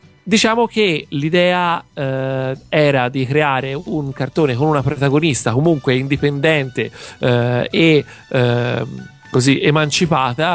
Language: Italian